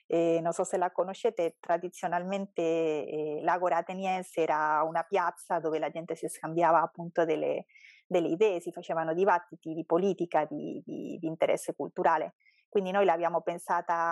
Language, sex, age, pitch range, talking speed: Italian, female, 30-49, 165-190 Hz, 150 wpm